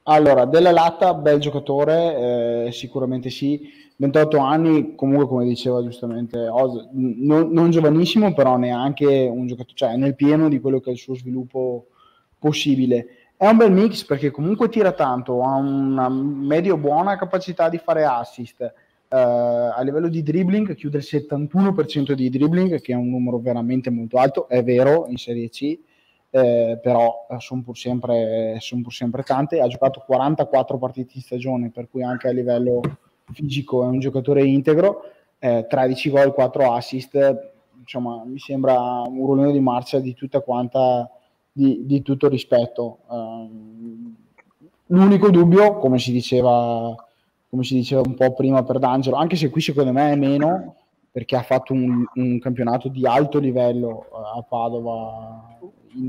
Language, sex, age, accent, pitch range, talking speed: Italian, male, 20-39, native, 120-145 Hz, 155 wpm